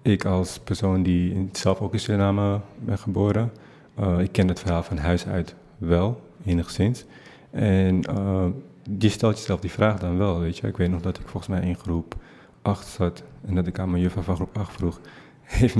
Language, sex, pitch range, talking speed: Dutch, male, 90-100 Hz, 200 wpm